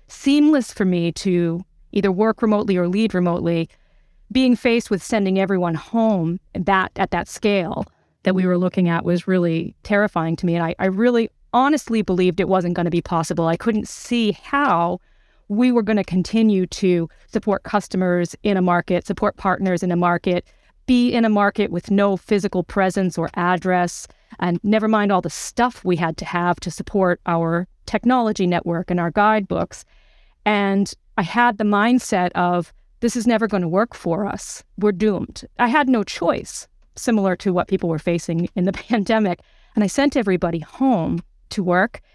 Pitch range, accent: 180-225 Hz, American